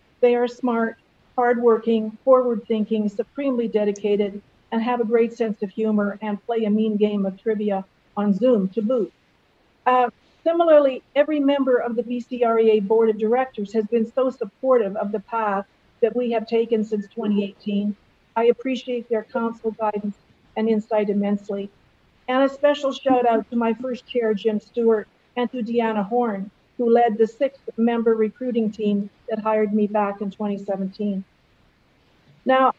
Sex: female